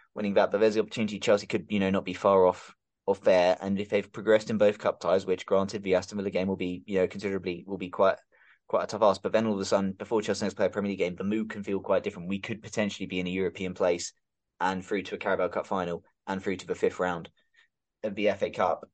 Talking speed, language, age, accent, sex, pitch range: 275 wpm, English, 20-39, British, male, 95-110 Hz